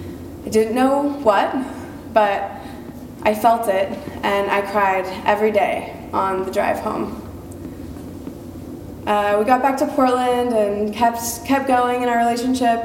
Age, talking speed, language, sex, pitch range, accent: 20-39, 140 wpm, English, female, 205-245 Hz, American